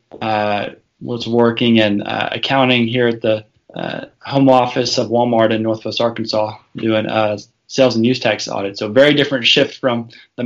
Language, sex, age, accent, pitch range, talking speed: English, male, 20-39, American, 110-125 Hz, 170 wpm